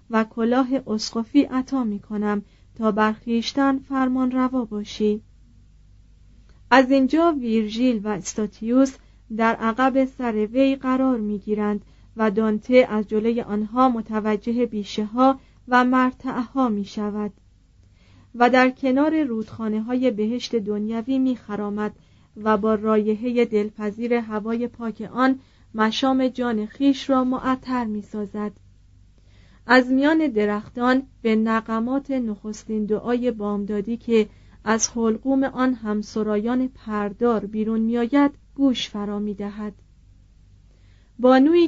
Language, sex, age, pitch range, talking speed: Persian, female, 40-59, 210-255 Hz, 110 wpm